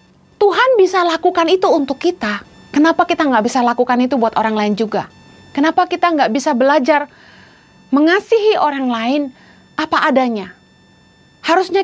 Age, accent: 30-49, native